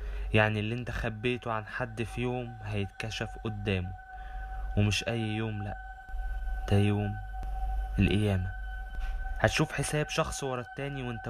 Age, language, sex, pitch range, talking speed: 20-39, Arabic, male, 110-155 Hz, 120 wpm